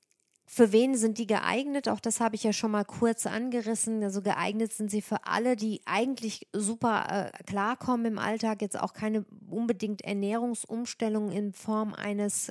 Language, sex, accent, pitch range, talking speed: German, female, German, 205-230 Hz, 170 wpm